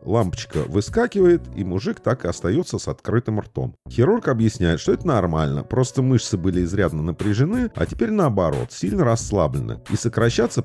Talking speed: 150 wpm